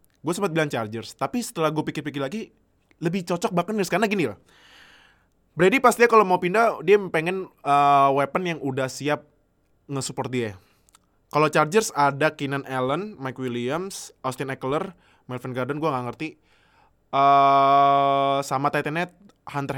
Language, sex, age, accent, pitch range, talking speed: Indonesian, male, 20-39, native, 135-170 Hz, 145 wpm